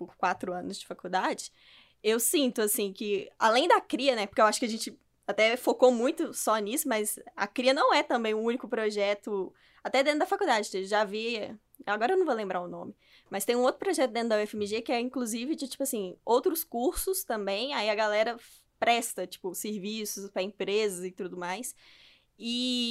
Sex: female